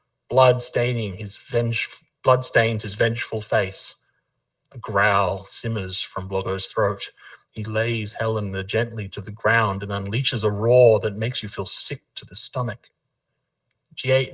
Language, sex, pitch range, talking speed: English, male, 105-130 Hz, 140 wpm